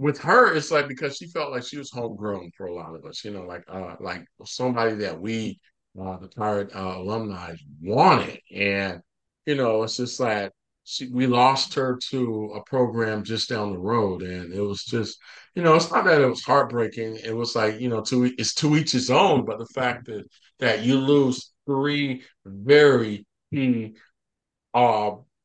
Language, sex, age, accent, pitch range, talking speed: English, male, 50-69, American, 110-145 Hz, 190 wpm